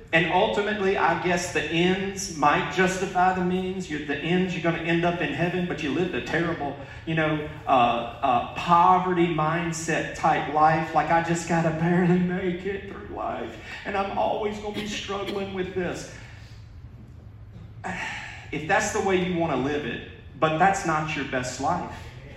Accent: American